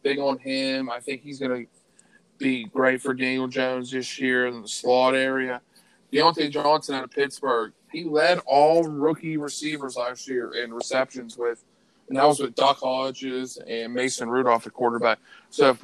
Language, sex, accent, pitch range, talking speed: English, male, American, 130-155 Hz, 180 wpm